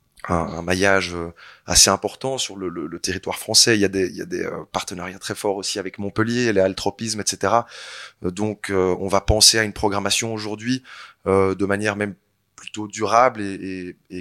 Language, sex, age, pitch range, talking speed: French, male, 20-39, 95-110 Hz, 185 wpm